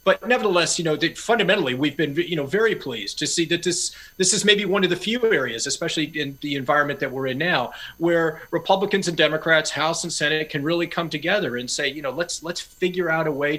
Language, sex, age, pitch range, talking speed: English, male, 30-49, 140-170 Hz, 235 wpm